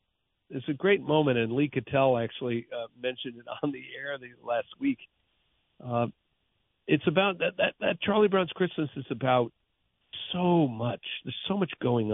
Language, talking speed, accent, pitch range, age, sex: English, 170 wpm, American, 105-135 Hz, 50-69, male